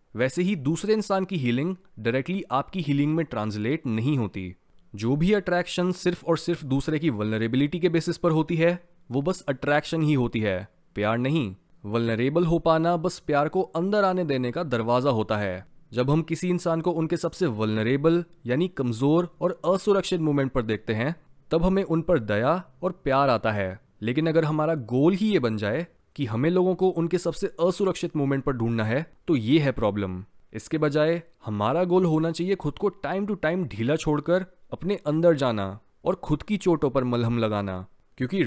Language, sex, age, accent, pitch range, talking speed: Hindi, male, 20-39, native, 125-175 Hz, 185 wpm